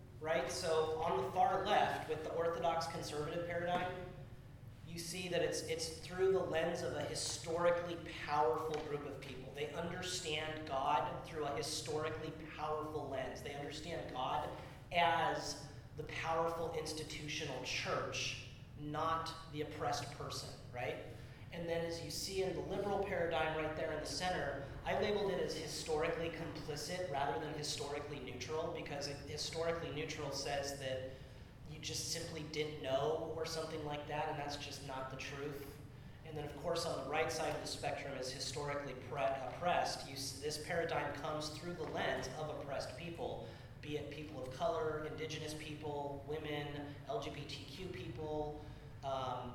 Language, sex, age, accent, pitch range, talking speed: English, male, 30-49, American, 135-165 Hz, 155 wpm